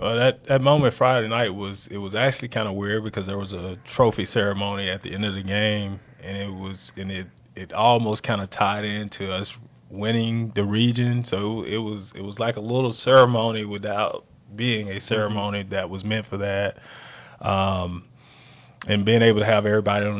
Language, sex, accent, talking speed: English, male, American, 195 wpm